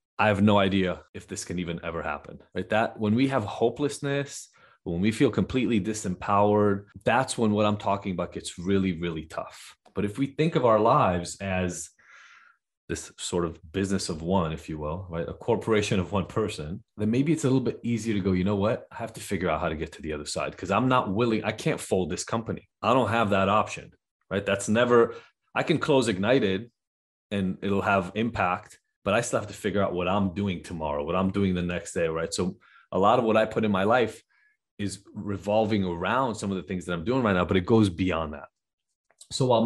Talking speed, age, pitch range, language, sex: 225 wpm, 30-49, 90-110 Hz, English, male